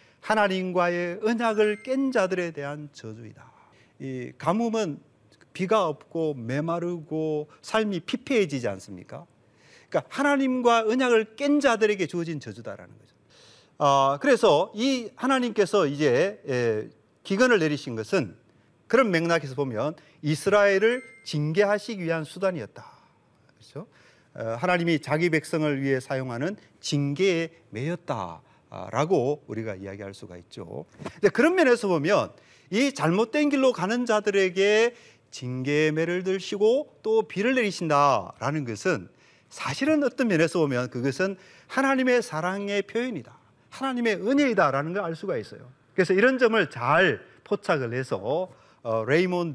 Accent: native